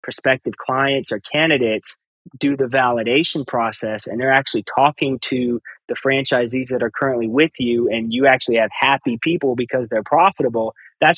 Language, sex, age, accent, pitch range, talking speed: English, male, 20-39, American, 115-135 Hz, 160 wpm